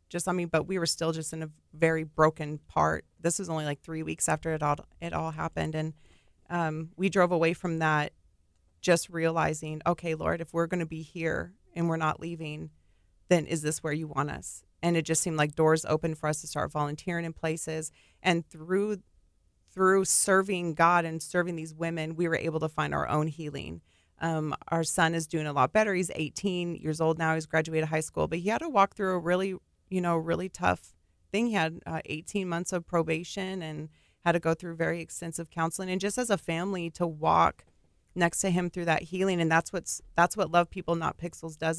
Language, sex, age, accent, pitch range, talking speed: English, female, 30-49, American, 155-175 Hz, 220 wpm